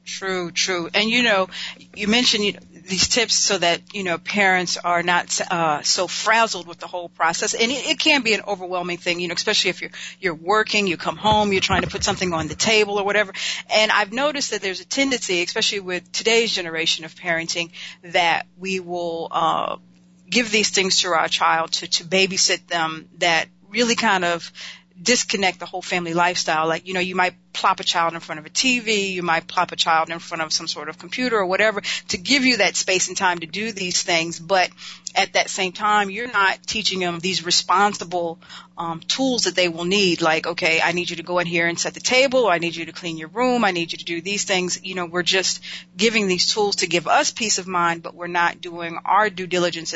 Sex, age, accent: female, 40-59, American